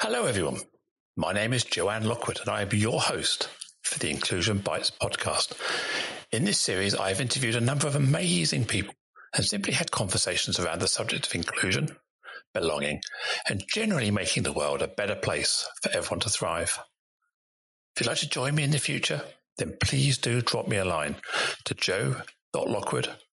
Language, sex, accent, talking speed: English, male, British, 170 wpm